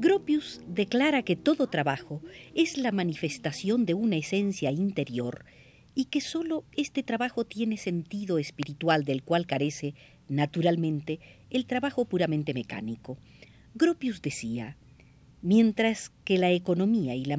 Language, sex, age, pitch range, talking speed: Spanish, female, 50-69, 145-225 Hz, 125 wpm